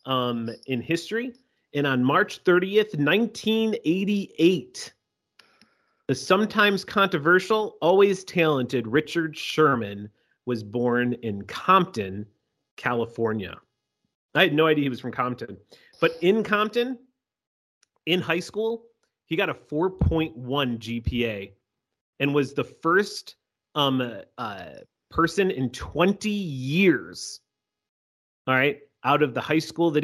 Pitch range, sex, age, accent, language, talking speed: 120-170 Hz, male, 30-49, American, English, 115 wpm